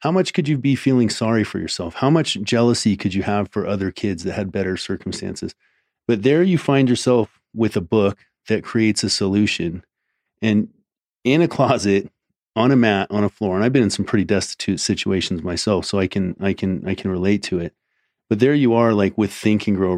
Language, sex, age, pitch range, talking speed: English, male, 30-49, 95-115 Hz, 215 wpm